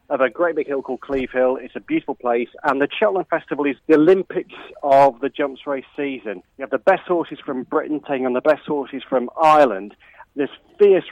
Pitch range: 130-160 Hz